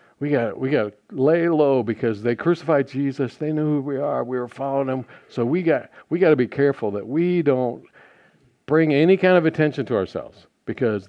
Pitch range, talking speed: 135-190 Hz, 210 wpm